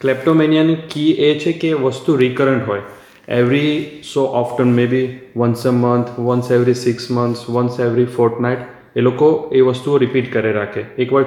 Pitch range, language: 120-135 Hz, Gujarati